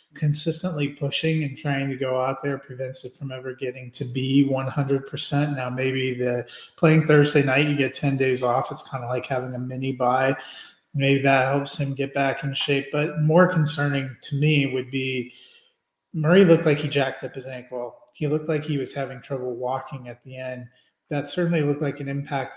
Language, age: English, 30-49